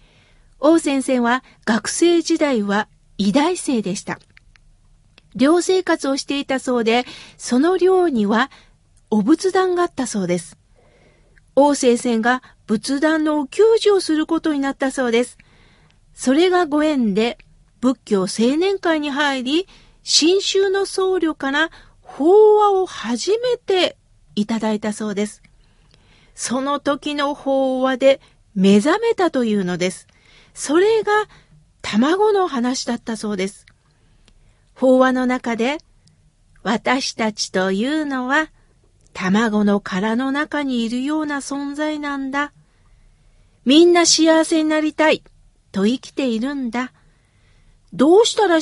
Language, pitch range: Japanese, 230-320 Hz